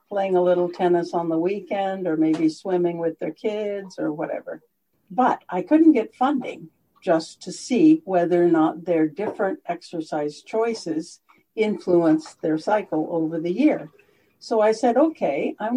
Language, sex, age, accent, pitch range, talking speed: English, female, 60-79, American, 175-250 Hz, 155 wpm